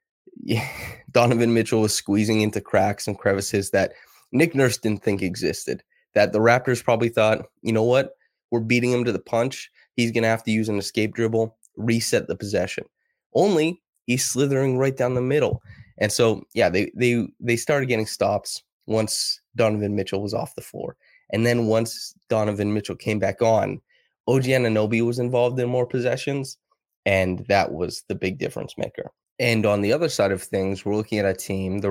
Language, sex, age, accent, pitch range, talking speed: English, male, 20-39, American, 95-120 Hz, 185 wpm